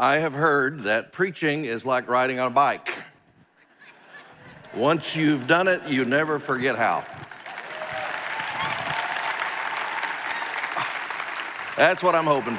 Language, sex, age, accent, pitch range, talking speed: English, male, 60-79, American, 120-150 Hz, 110 wpm